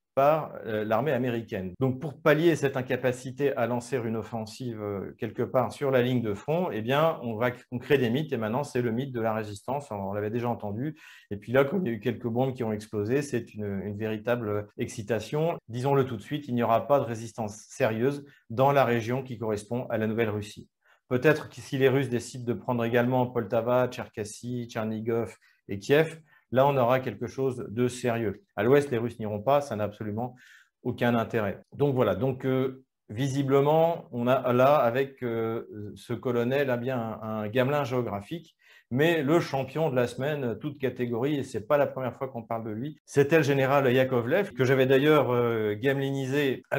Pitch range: 115-140 Hz